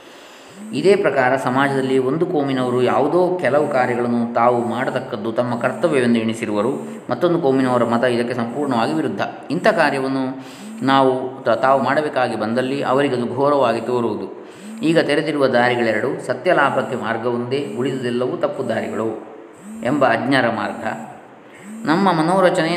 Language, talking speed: Kannada, 110 wpm